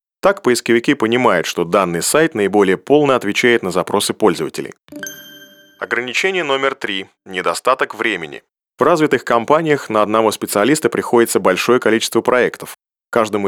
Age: 30-49